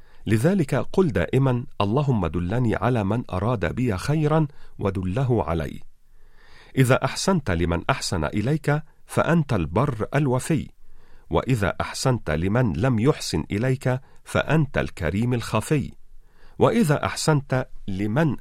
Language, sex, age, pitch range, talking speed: Arabic, male, 40-59, 95-140 Hz, 105 wpm